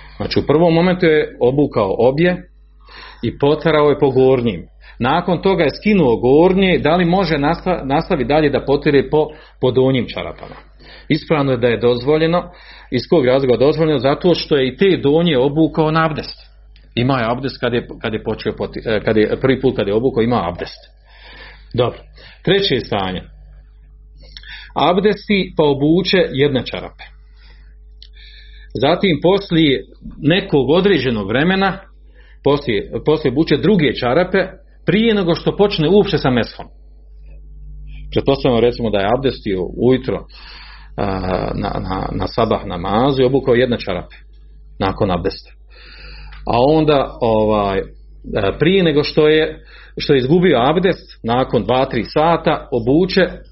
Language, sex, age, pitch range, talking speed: Croatian, male, 40-59, 115-170 Hz, 140 wpm